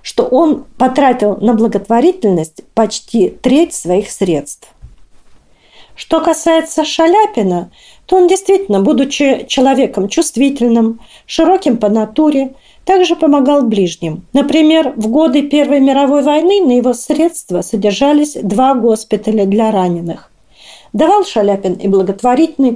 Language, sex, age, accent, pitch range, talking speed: Russian, female, 40-59, native, 205-305 Hz, 110 wpm